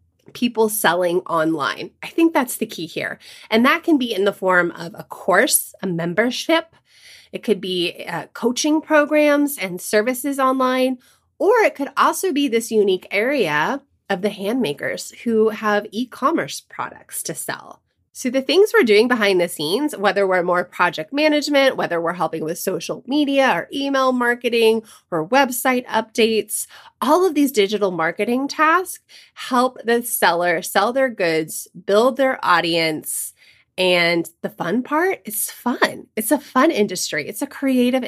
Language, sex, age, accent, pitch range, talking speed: English, female, 20-39, American, 185-265 Hz, 160 wpm